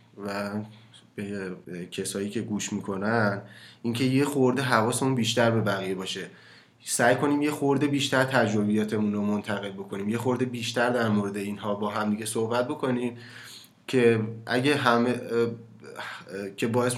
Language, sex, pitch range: Persian, male, 105-125 Hz